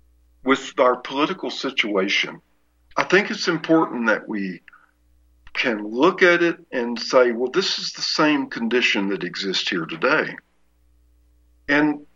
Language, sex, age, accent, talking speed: English, male, 60-79, American, 135 wpm